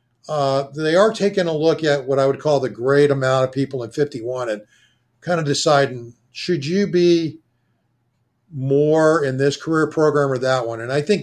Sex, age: male, 50-69